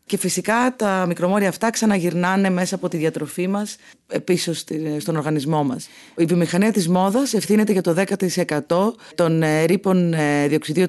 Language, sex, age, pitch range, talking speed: Greek, female, 30-49, 165-210 Hz, 145 wpm